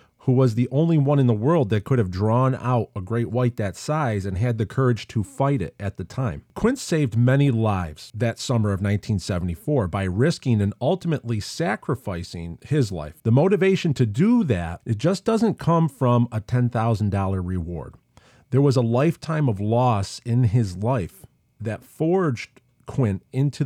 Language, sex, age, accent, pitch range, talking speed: English, male, 40-59, American, 100-130 Hz, 175 wpm